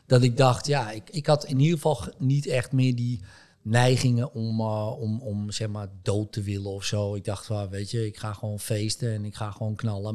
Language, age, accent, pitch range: Dutch, 50-69, Dutch, 105-130 Hz